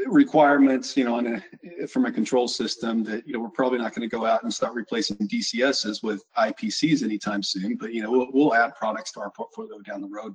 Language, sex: English, male